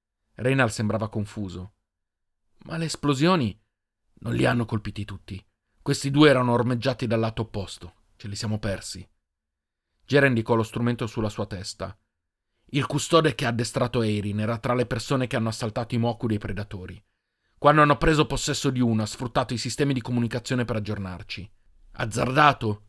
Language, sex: Italian, male